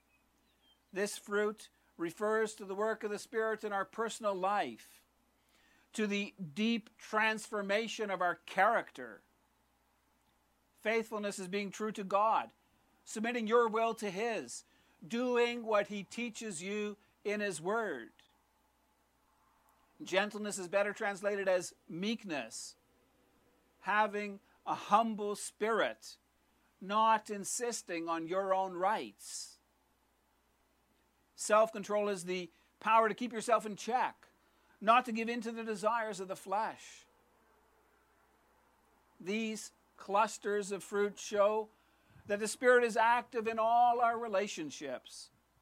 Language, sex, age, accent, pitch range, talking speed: English, male, 60-79, American, 195-220 Hz, 115 wpm